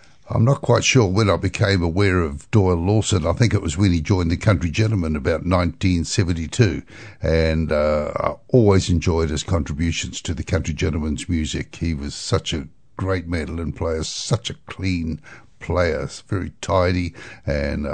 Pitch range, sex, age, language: 80-100 Hz, male, 60-79, English